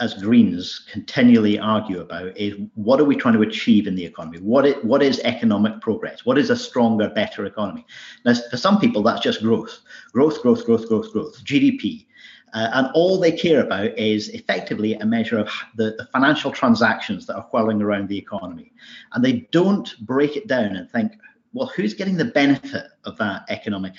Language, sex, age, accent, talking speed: English, male, 50-69, British, 190 wpm